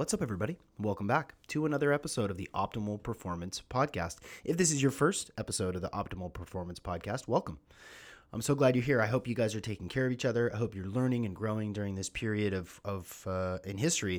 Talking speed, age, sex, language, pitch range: 230 wpm, 30-49, male, English, 95-120 Hz